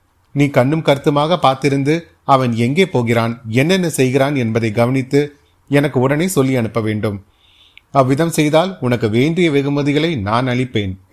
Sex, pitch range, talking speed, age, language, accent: male, 115-145 Hz, 125 wpm, 30-49, Tamil, native